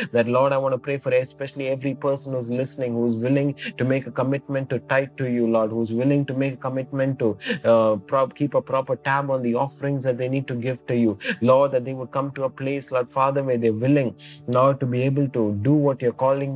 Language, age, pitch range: English, 30-49, 125-140 Hz